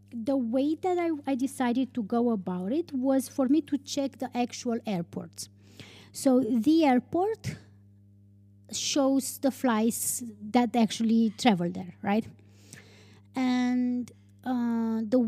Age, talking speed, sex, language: 20-39, 125 wpm, female, English